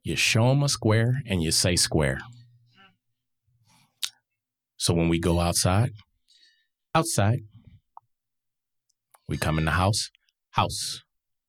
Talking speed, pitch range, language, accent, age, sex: 110 wpm, 90-115 Hz, English, American, 30-49, male